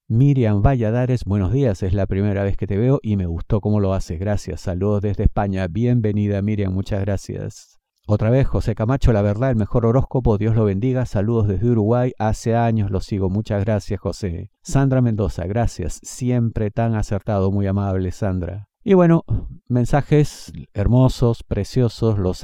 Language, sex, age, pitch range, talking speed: Spanish, male, 50-69, 95-120 Hz, 165 wpm